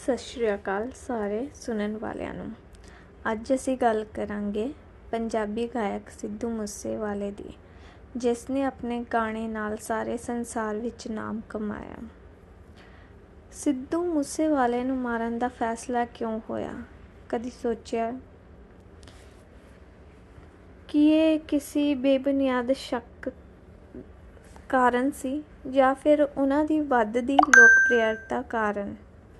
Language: Punjabi